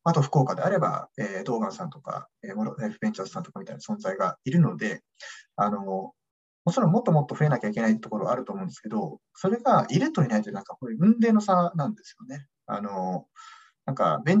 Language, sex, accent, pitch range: Japanese, male, native, 130-190 Hz